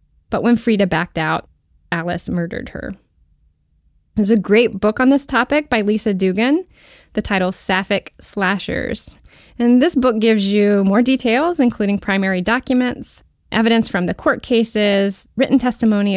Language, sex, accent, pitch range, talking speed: English, female, American, 180-230 Hz, 145 wpm